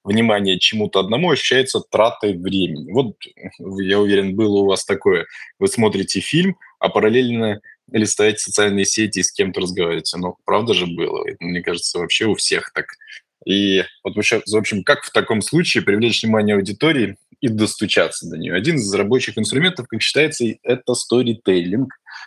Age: 20-39